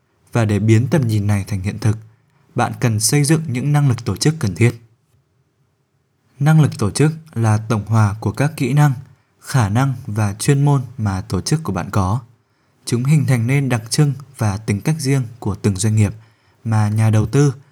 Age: 20-39